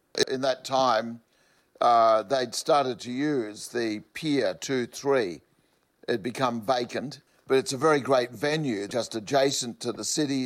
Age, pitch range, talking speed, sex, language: 60-79, 110-130 Hz, 145 wpm, male, English